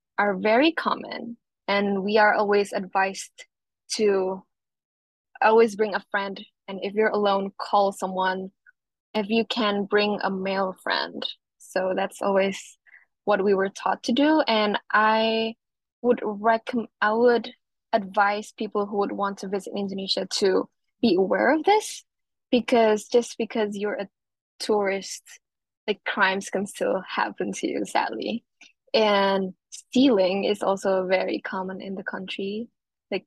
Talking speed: 140 wpm